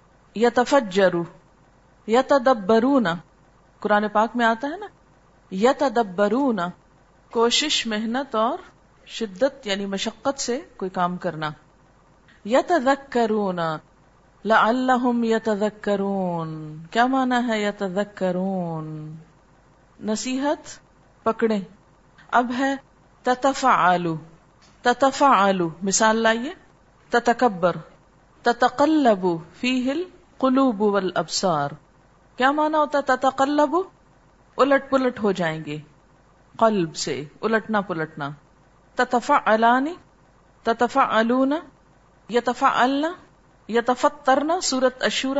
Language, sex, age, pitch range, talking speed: Arabic, female, 40-59, 185-260 Hz, 75 wpm